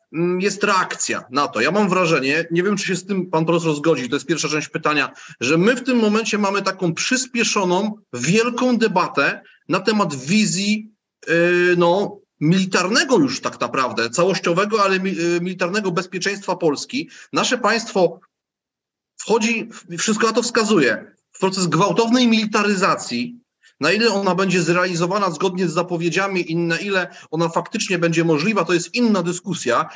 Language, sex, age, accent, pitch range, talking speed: Polish, male, 30-49, native, 165-200 Hz, 155 wpm